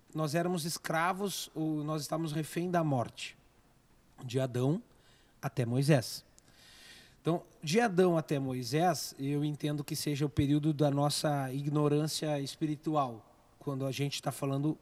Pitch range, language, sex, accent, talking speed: 140-180 Hz, Portuguese, male, Brazilian, 135 wpm